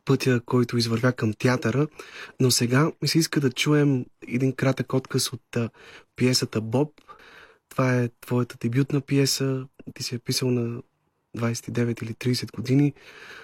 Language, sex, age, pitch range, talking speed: Bulgarian, male, 30-49, 110-130 Hz, 145 wpm